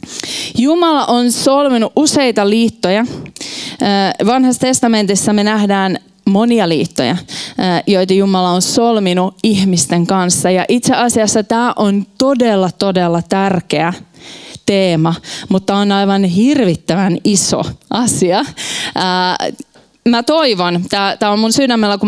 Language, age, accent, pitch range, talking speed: Finnish, 20-39, native, 190-235 Hz, 110 wpm